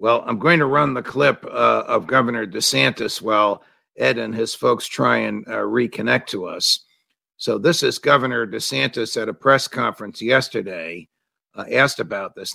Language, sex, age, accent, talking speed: English, male, 50-69, American, 170 wpm